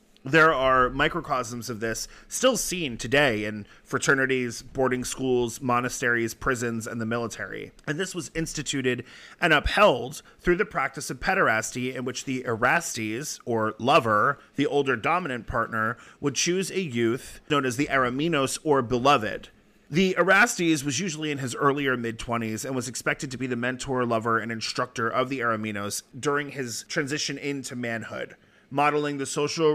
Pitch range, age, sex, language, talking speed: 125-155 Hz, 30-49, male, English, 155 wpm